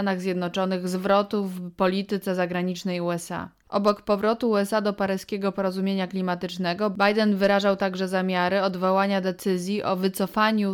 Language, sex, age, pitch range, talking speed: Polish, female, 20-39, 185-205 Hz, 115 wpm